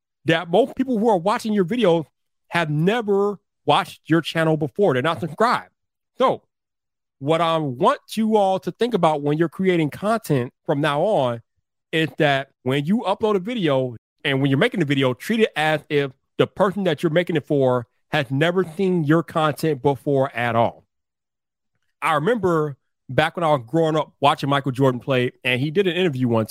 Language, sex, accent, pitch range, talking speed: English, male, American, 135-185 Hz, 190 wpm